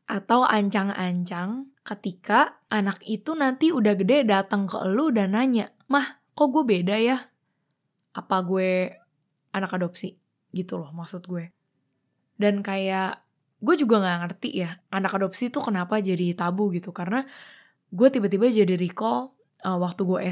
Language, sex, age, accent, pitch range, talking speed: Indonesian, female, 10-29, native, 180-220 Hz, 140 wpm